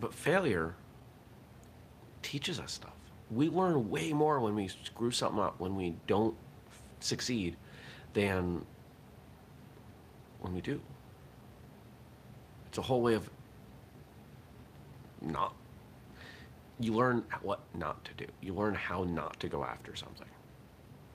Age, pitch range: 40-59, 90-115 Hz